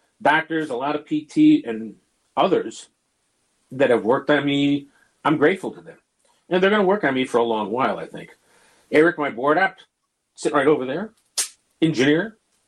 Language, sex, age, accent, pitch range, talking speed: English, male, 50-69, American, 140-190 Hz, 180 wpm